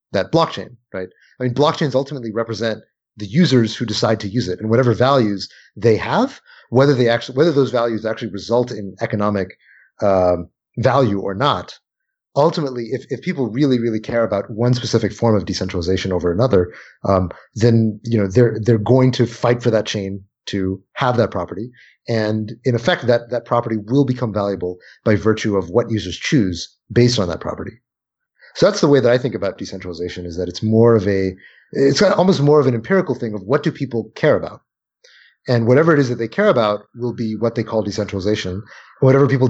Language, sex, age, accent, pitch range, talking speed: English, male, 30-49, American, 105-130 Hz, 195 wpm